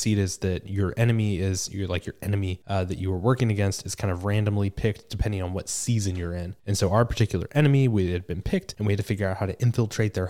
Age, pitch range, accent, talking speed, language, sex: 20-39, 95-110 Hz, American, 270 wpm, English, male